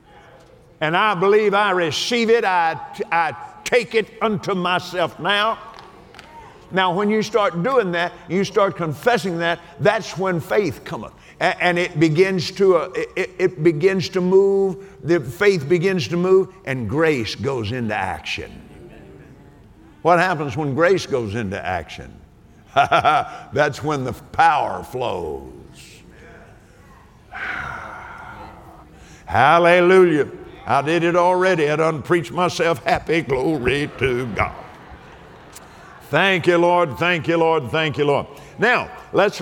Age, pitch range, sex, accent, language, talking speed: 50-69, 155-195 Hz, male, American, English, 125 wpm